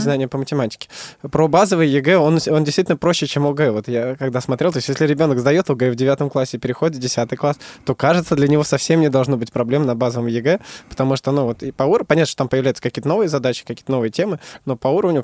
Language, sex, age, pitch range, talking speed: Russian, male, 20-39, 125-150 Hz, 240 wpm